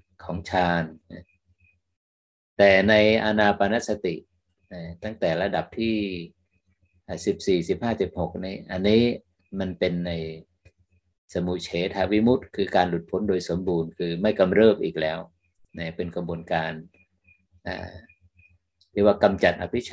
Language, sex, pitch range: Thai, male, 85-95 Hz